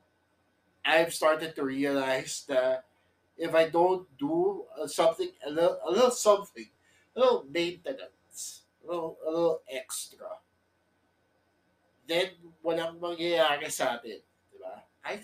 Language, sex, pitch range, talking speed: English, male, 120-180 Hz, 105 wpm